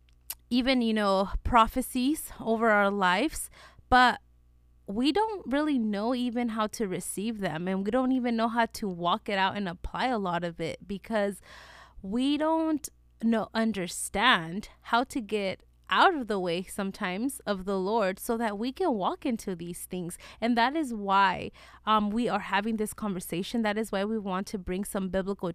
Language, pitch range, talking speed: English, 180-235 Hz, 180 wpm